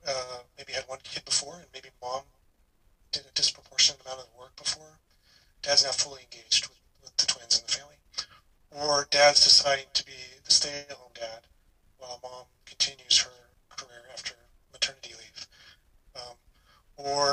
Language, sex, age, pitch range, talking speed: English, male, 30-49, 120-140 Hz, 160 wpm